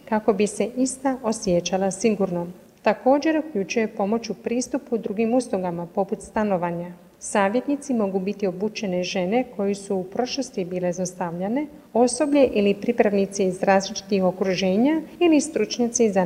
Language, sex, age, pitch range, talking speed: Croatian, female, 40-59, 195-245 Hz, 130 wpm